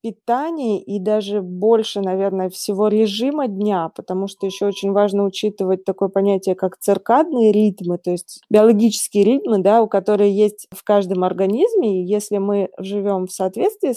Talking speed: 155 wpm